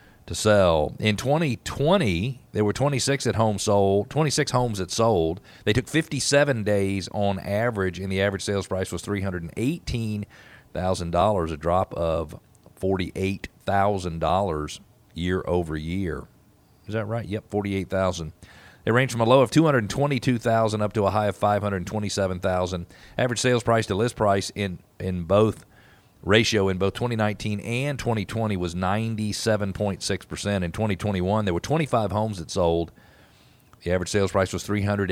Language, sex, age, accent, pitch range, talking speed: English, male, 40-59, American, 90-110 Hz, 185 wpm